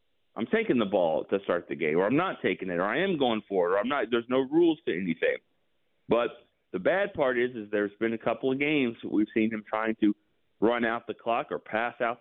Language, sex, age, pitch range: English, male, 30-49, 100-120 Hz